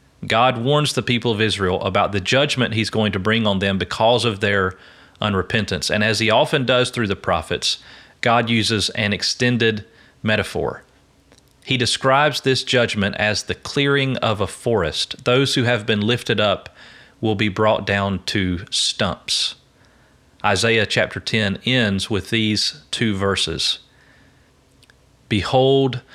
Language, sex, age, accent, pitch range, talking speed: English, male, 40-59, American, 100-125 Hz, 145 wpm